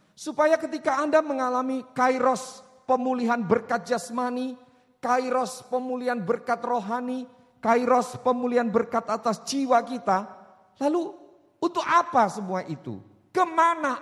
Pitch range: 180-255 Hz